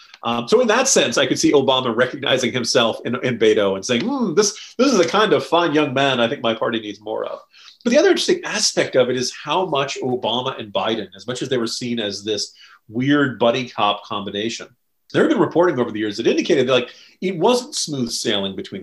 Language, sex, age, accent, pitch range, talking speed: English, male, 40-59, American, 110-145 Hz, 235 wpm